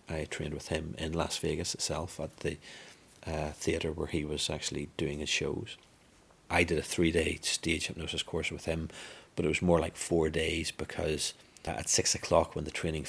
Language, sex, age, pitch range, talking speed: English, male, 40-59, 80-90 Hz, 195 wpm